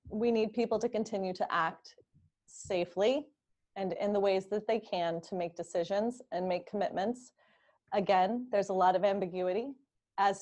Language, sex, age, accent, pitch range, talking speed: English, female, 30-49, American, 195-250 Hz, 160 wpm